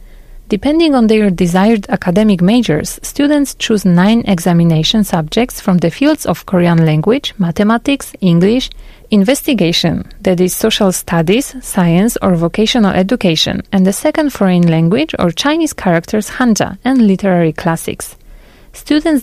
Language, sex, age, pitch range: Korean, female, 30-49, 180-245 Hz